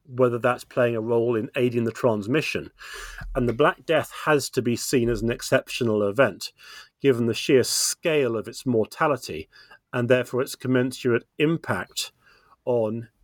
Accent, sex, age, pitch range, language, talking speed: British, male, 40-59, 115-130 Hz, English, 155 wpm